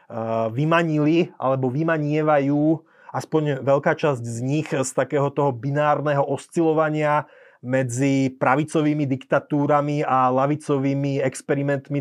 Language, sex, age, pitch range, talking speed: Slovak, male, 30-49, 135-160 Hz, 95 wpm